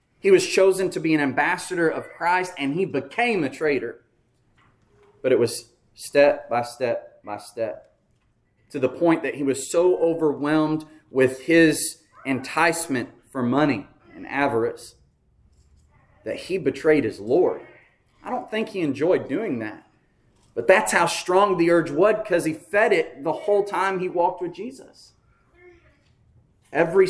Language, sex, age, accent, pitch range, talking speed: English, male, 30-49, American, 120-165 Hz, 150 wpm